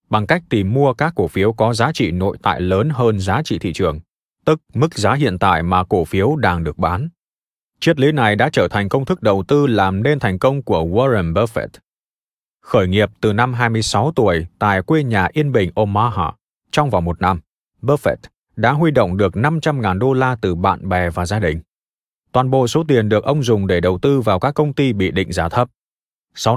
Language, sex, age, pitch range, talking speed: Vietnamese, male, 20-39, 95-135 Hz, 215 wpm